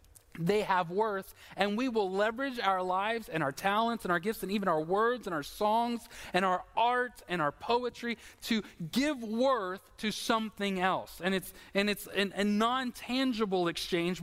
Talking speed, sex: 175 wpm, male